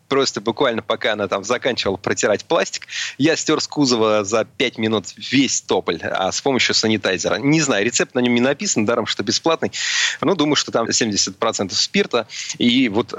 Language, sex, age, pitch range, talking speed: Russian, male, 30-49, 105-135 Hz, 175 wpm